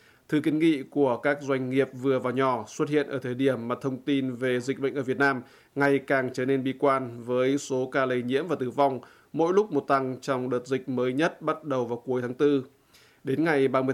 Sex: male